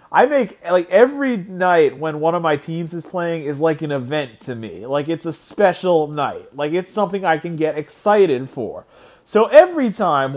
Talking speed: 195 wpm